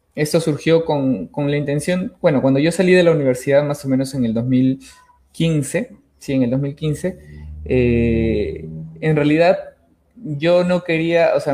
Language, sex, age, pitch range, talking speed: Spanish, male, 20-39, 120-155 Hz, 160 wpm